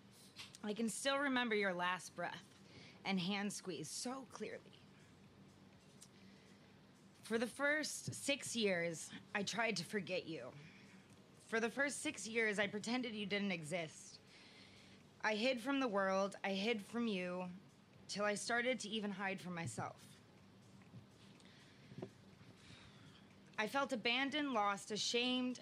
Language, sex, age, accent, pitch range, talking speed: English, female, 20-39, American, 190-235 Hz, 125 wpm